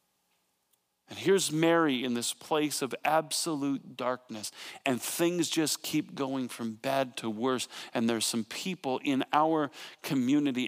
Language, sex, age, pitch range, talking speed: English, male, 50-69, 115-150 Hz, 140 wpm